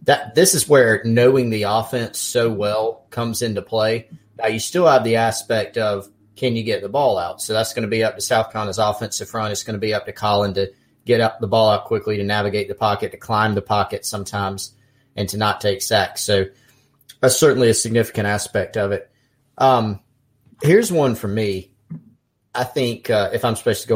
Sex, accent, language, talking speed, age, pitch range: male, American, English, 215 wpm, 30-49, 105-115 Hz